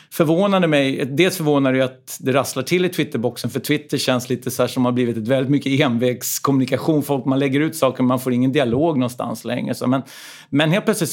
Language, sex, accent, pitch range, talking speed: Swedish, male, native, 120-145 Hz, 215 wpm